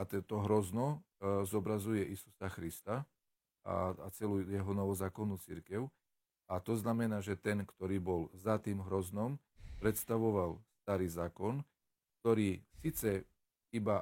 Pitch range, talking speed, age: 100-120 Hz, 115 wpm, 40-59